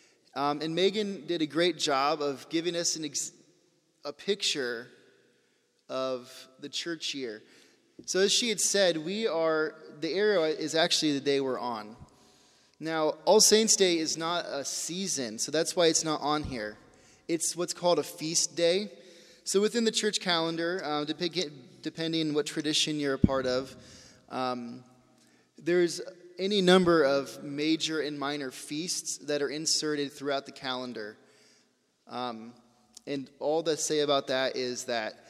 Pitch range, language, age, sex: 140-175 Hz, English, 20-39, male